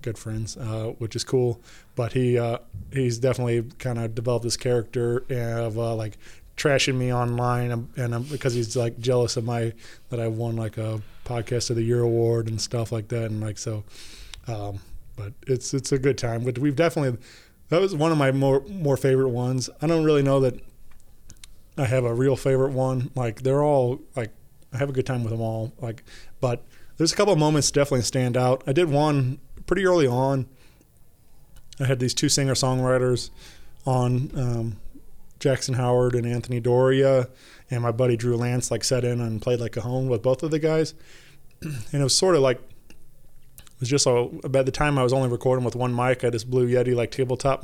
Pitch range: 115-135 Hz